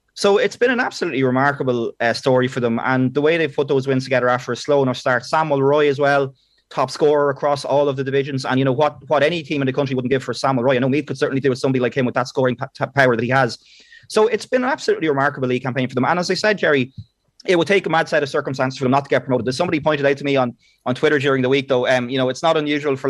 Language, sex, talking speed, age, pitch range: English, male, 305 wpm, 30-49, 130-150 Hz